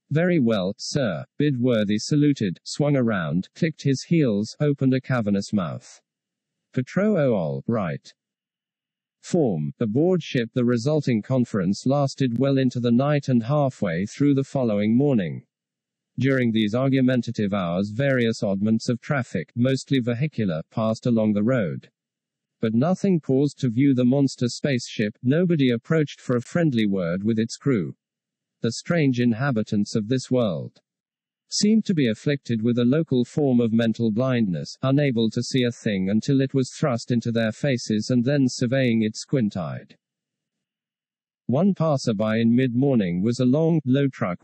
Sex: male